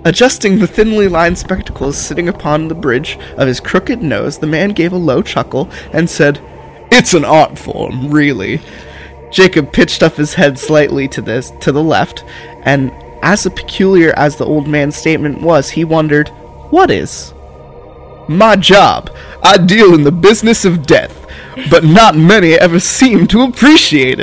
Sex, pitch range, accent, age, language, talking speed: male, 145-190 Hz, American, 20-39, English, 165 wpm